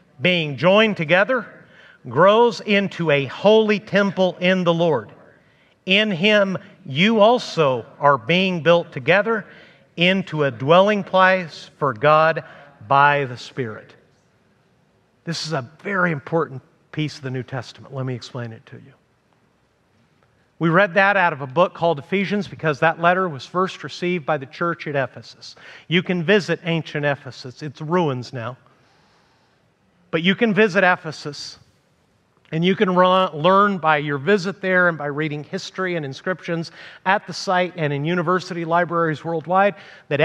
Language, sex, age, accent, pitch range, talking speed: English, male, 50-69, American, 145-190 Hz, 150 wpm